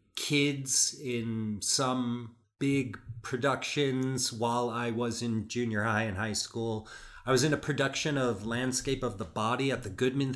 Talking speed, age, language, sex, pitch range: 155 wpm, 30-49, English, male, 110-130 Hz